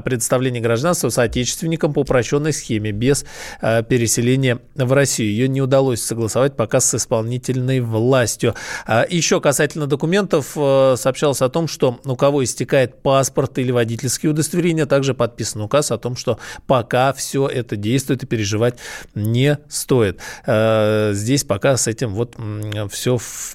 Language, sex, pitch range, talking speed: Russian, male, 115-145 Hz, 135 wpm